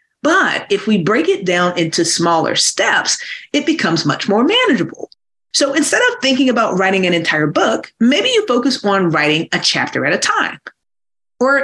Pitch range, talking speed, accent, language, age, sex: 180-275 Hz, 175 wpm, American, English, 30-49, female